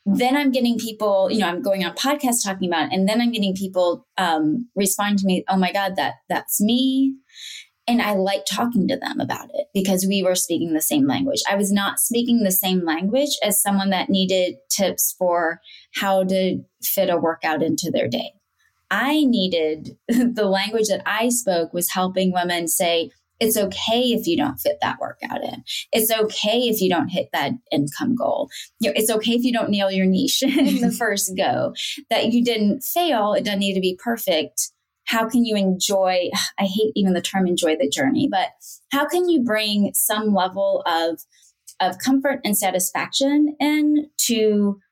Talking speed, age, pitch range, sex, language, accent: 190 wpm, 20-39, 190-250 Hz, female, English, American